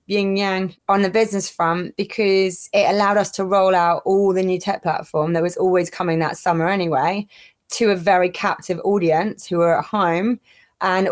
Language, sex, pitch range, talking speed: English, female, 175-200 Hz, 190 wpm